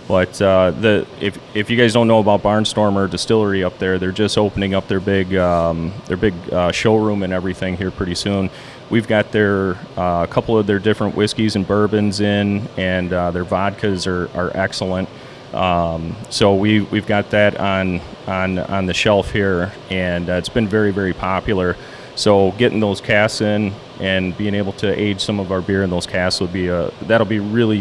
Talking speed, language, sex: 195 wpm, English, male